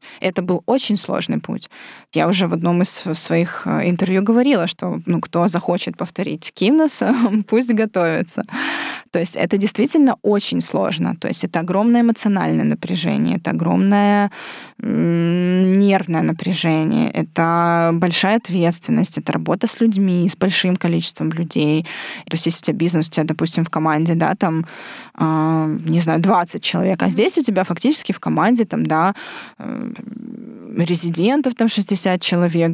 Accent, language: native, Ukrainian